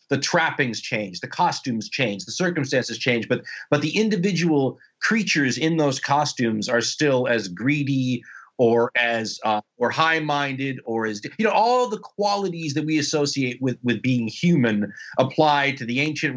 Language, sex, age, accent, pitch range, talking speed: English, male, 30-49, American, 120-160 Hz, 165 wpm